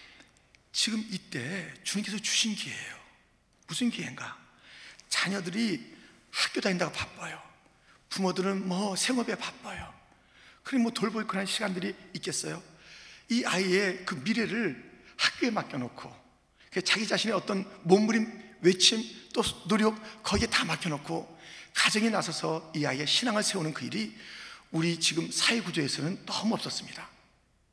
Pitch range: 180-235 Hz